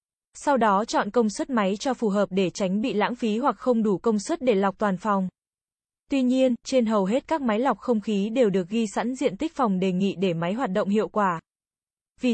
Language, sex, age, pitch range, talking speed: Vietnamese, female, 20-39, 200-245 Hz, 240 wpm